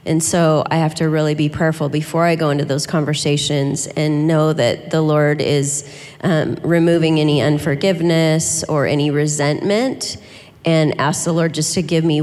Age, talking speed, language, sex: 30-49, 170 wpm, English, female